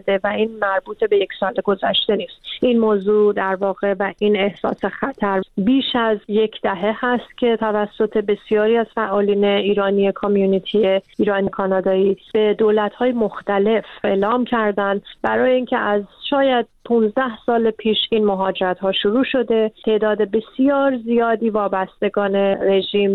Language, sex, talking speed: Persian, female, 135 wpm